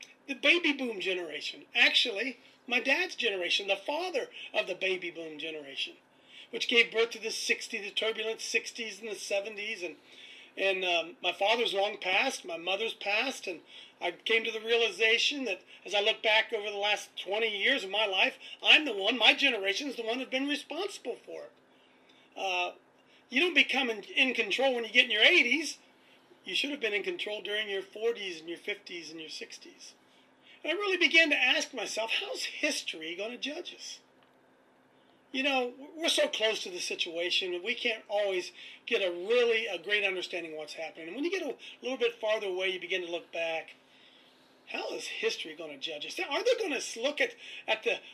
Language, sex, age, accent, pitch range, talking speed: English, male, 40-59, American, 190-275 Hz, 200 wpm